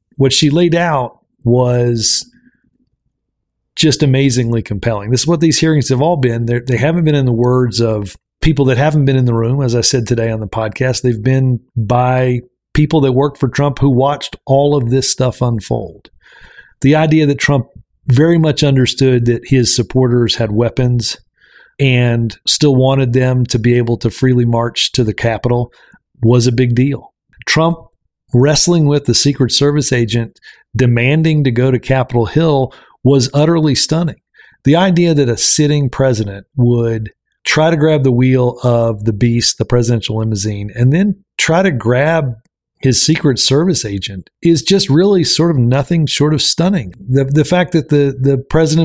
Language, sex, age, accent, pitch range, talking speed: English, male, 40-59, American, 120-155 Hz, 175 wpm